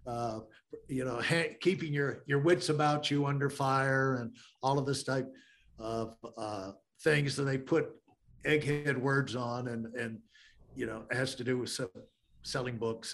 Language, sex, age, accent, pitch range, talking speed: English, male, 50-69, American, 135-175 Hz, 175 wpm